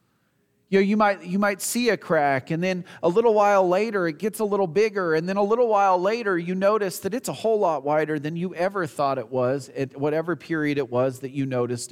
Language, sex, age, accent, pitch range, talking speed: English, male, 40-59, American, 115-180 Hz, 240 wpm